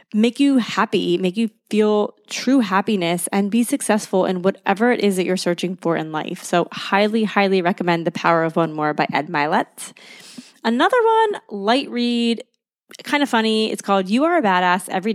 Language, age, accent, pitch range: English, 20-39, American, 185-230 Hz